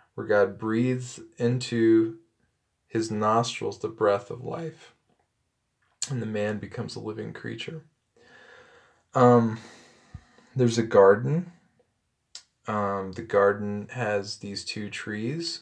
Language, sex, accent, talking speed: English, male, American, 110 wpm